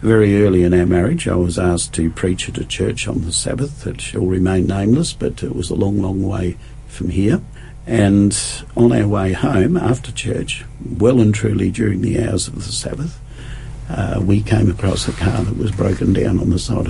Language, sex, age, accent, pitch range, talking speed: English, male, 50-69, Australian, 95-125 Hz, 205 wpm